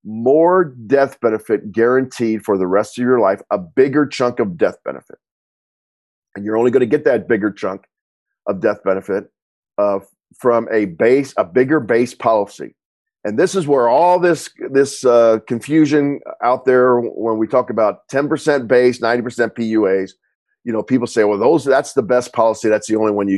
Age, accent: 40-59, American